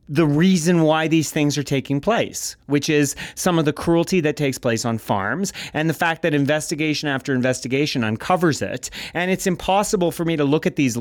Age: 30-49